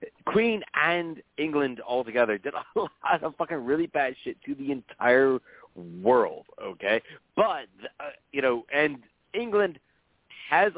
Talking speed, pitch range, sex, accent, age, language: 135 wpm, 120-155 Hz, male, American, 30-49, English